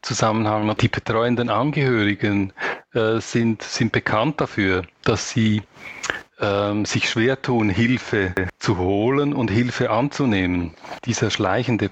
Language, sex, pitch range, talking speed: German, male, 105-125 Hz, 115 wpm